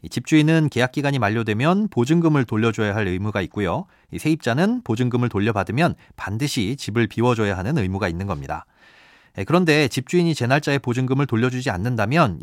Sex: male